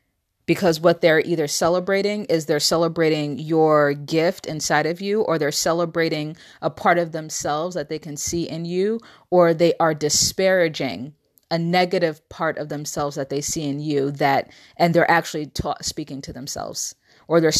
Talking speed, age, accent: 165 wpm, 30-49, American